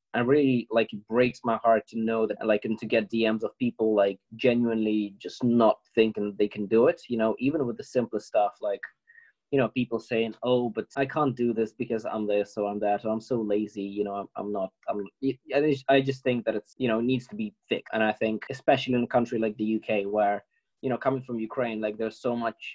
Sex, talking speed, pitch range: male, 235 wpm, 110-130 Hz